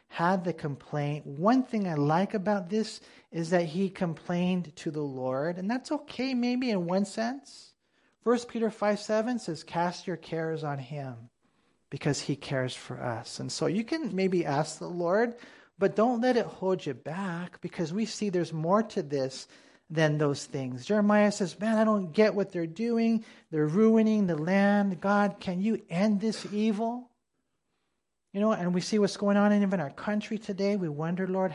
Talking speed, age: 185 wpm, 40-59